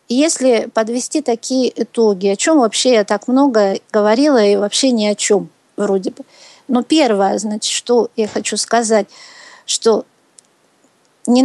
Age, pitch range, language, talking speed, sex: 50-69, 220-285 Hz, Russian, 140 wpm, female